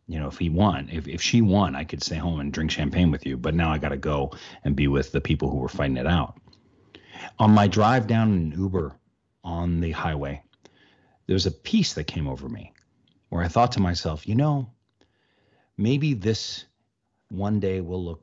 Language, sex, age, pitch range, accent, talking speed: English, male, 40-59, 80-105 Hz, American, 210 wpm